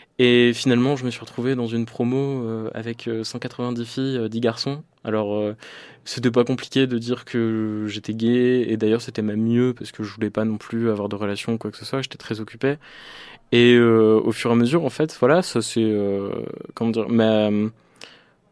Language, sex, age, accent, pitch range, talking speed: French, male, 20-39, French, 115-140 Hz, 215 wpm